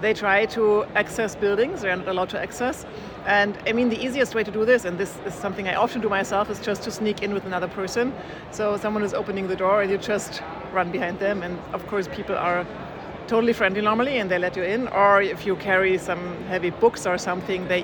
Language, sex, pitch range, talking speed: English, female, 185-215 Hz, 235 wpm